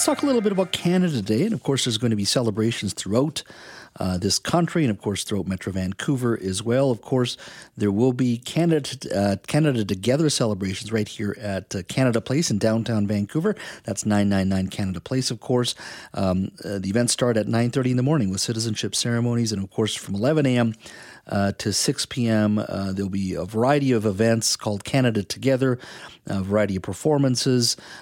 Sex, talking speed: male, 195 wpm